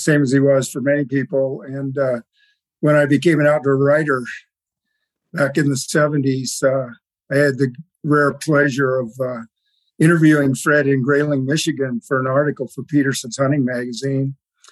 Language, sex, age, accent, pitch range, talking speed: English, male, 50-69, American, 135-150 Hz, 160 wpm